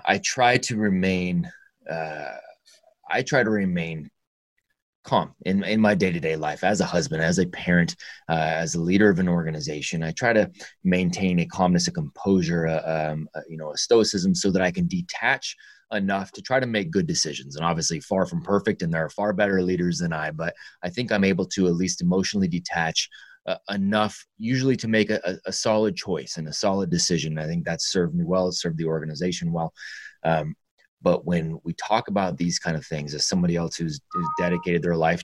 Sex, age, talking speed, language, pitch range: male, 30-49, 205 wpm, English, 80-105 Hz